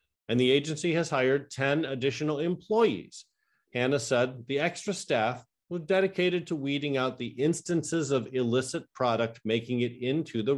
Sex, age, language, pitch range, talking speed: male, 50-69, English, 115-150 Hz, 155 wpm